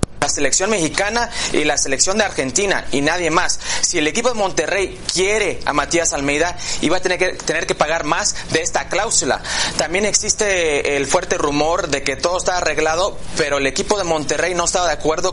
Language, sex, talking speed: Spanish, male, 195 wpm